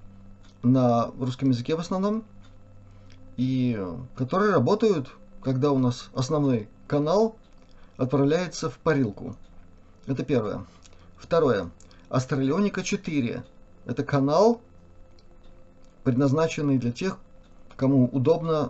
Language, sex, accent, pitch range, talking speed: Russian, male, native, 100-160 Hz, 85 wpm